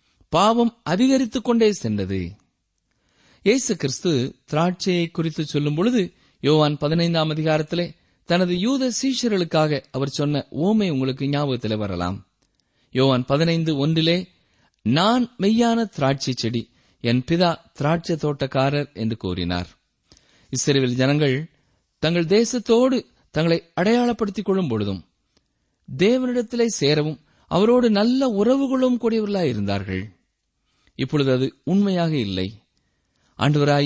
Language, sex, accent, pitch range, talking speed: Tamil, male, native, 130-210 Hz, 90 wpm